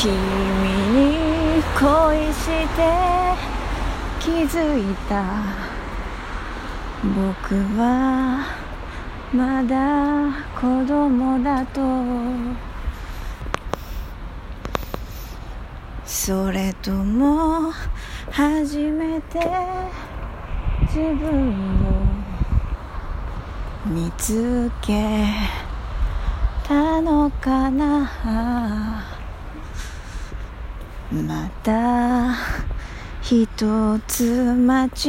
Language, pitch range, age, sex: Japanese, 190-290 Hz, 30-49, female